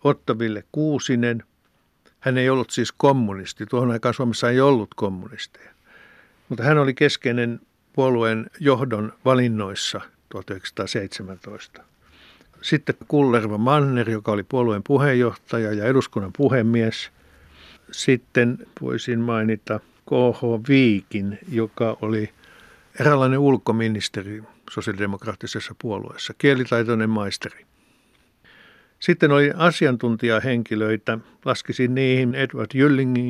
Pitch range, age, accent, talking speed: 110-130 Hz, 60-79, native, 90 wpm